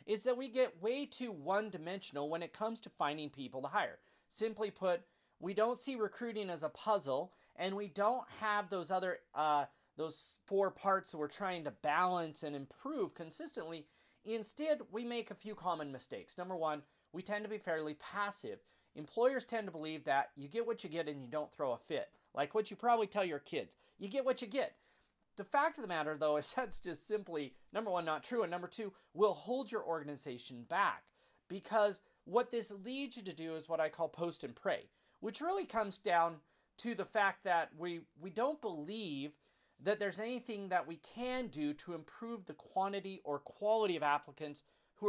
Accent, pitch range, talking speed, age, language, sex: American, 160-220 Hz, 200 wpm, 30-49, English, male